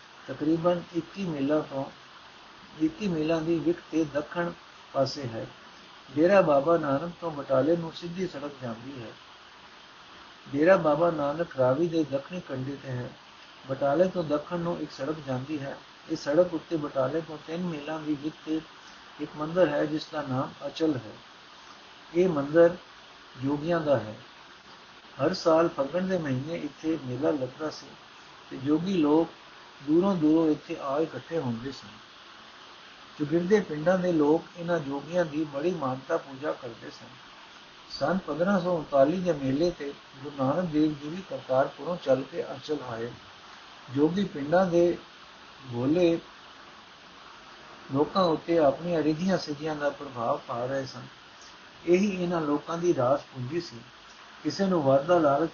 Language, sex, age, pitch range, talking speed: Punjabi, male, 60-79, 135-170 Hz, 125 wpm